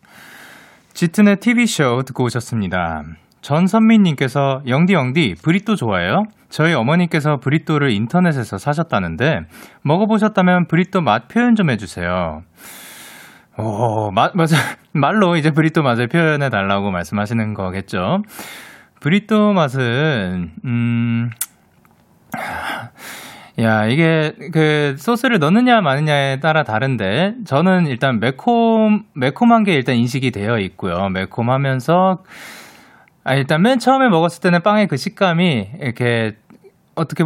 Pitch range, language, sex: 115-190 Hz, Korean, male